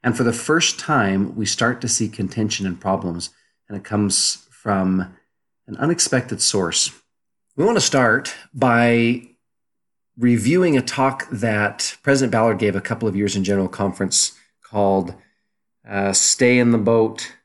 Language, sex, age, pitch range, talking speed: English, male, 40-59, 100-120 Hz, 150 wpm